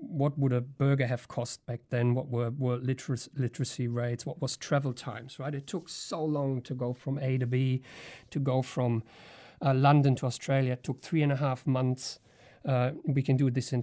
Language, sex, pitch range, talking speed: English, male, 125-145 Hz, 215 wpm